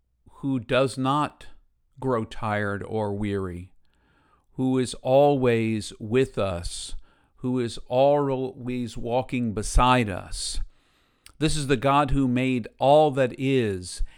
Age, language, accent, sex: 50-69, English, American, male